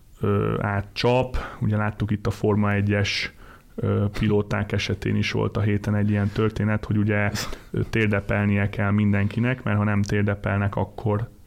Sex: male